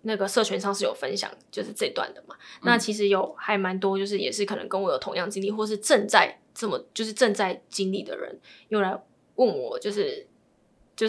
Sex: female